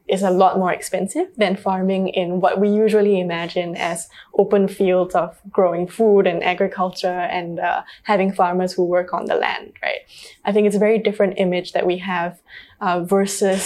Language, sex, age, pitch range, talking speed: English, female, 10-29, 180-205 Hz, 185 wpm